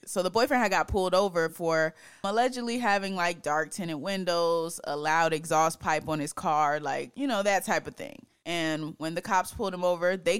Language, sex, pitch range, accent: English, female, 155-195 Hz, American